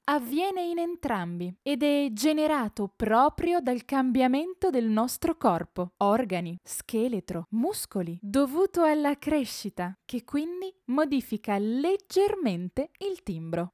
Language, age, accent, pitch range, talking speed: Italian, 20-39, native, 210-320 Hz, 105 wpm